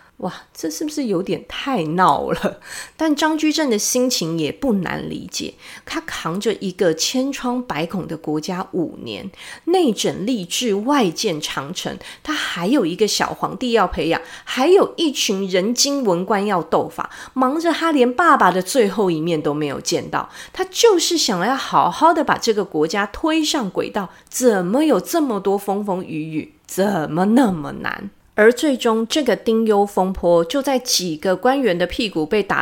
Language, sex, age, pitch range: Chinese, female, 30-49, 175-295 Hz